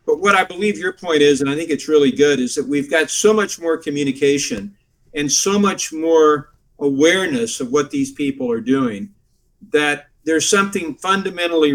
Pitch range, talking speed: 135-205 Hz, 185 wpm